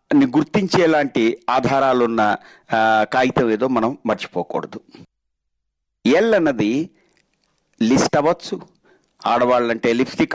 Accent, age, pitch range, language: native, 50-69, 120-160 Hz, Telugu